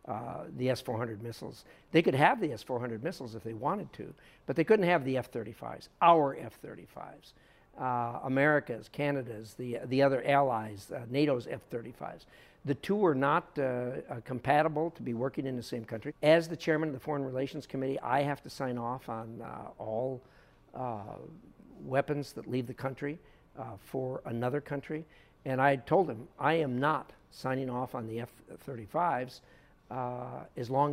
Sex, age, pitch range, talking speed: male, 60-79, 120-150 Hz, 170 wpm